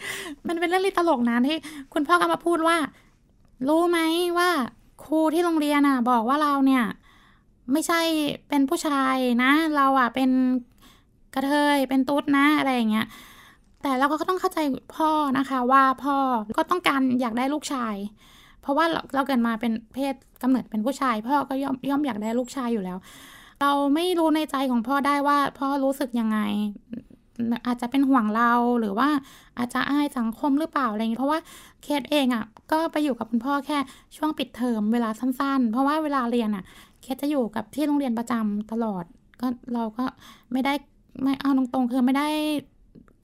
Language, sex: Thai, female